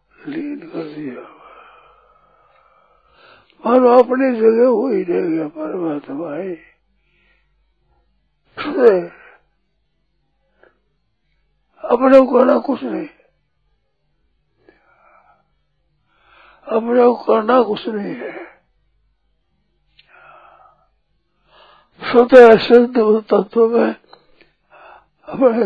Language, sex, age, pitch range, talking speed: Hindi, male, 60-79, 215-305 Hz, 65 wpm